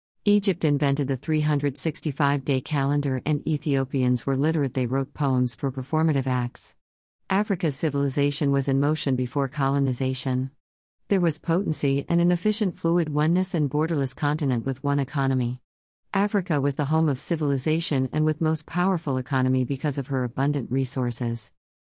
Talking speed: 140 wpm